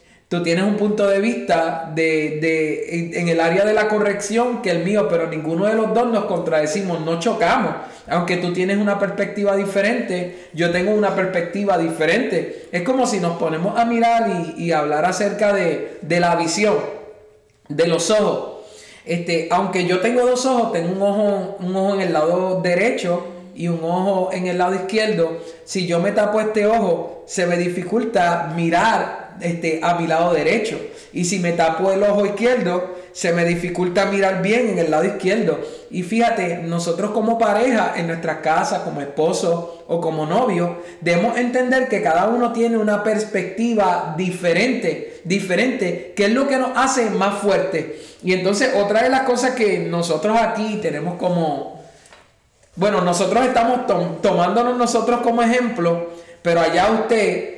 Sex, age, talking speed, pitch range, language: male, 20-39, 170 wpm, 170-220 Hz, Spanish